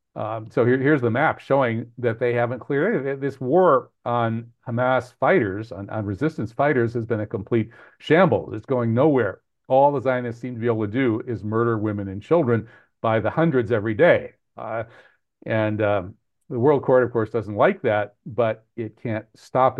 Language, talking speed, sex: English, 190 wpm, male